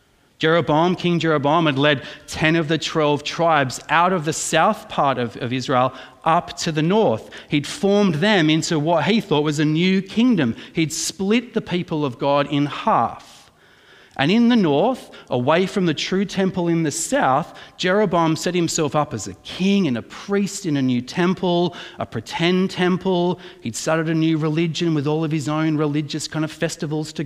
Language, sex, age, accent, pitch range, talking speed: English, male, 30-49, Australian, 125-165 Hz, 185 wpm